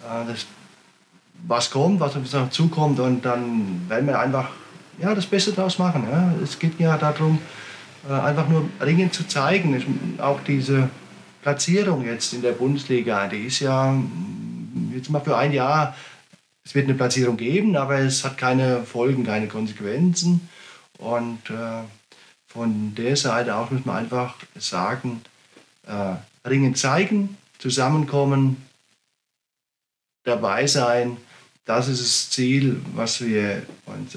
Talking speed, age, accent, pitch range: 130 wpm, 40-59, German, 115-145 Hz